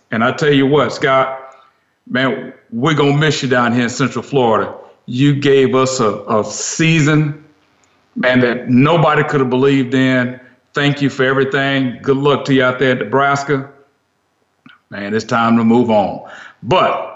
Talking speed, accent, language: 170 wpm, American, English